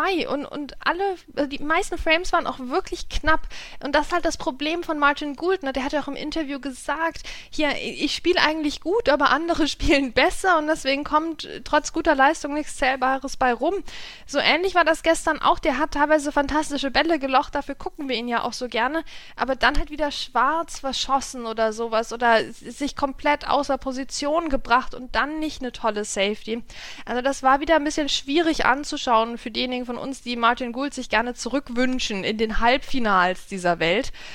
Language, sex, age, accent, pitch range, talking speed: German, female, 20-39, German, 240-300 Hz, 190 wpm